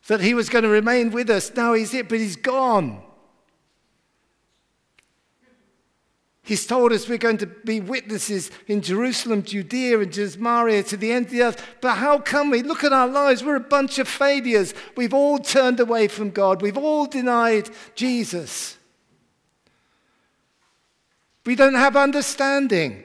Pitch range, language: 190-255 Hz, English